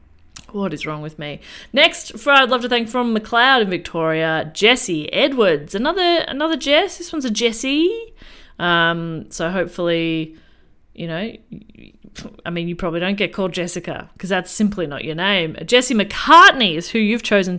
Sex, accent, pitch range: female, Australian, 165-230 Hz